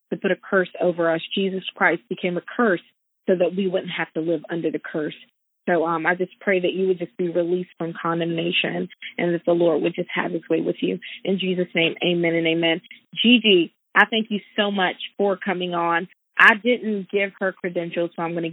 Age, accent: 20-39, American